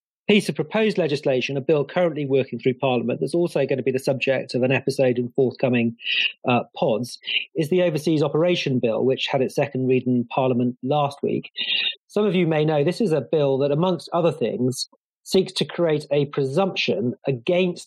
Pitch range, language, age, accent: 130-170 Hz, English, 40-59, British